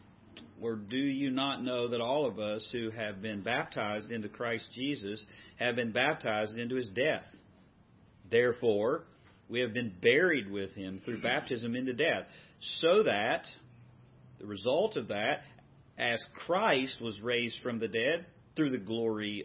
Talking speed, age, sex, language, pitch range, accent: 150 wpm, 40-59, male, English, 105-135 Hz, American